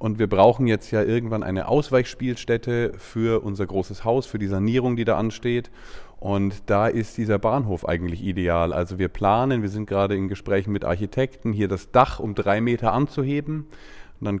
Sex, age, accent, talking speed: male, 30-49, German, 185 wpm